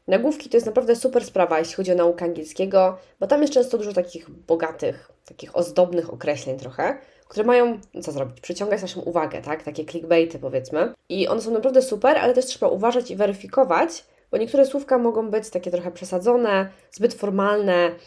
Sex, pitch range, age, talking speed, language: female, 170-245 Hz, 20-39, 180 wpm, Polish